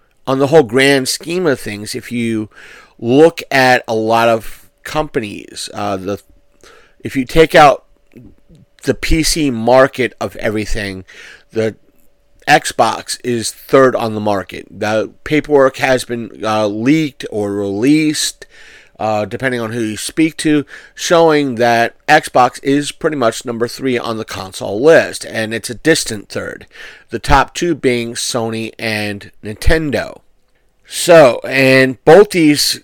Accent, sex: American, male